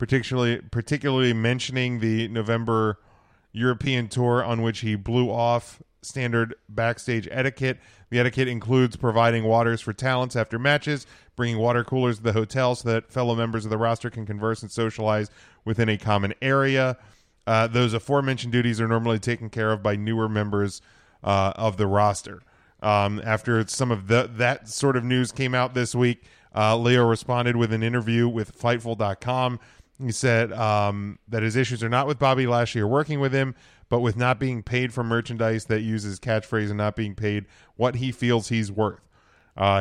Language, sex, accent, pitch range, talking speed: English, male, American, 110-125 Hz, 175 wpm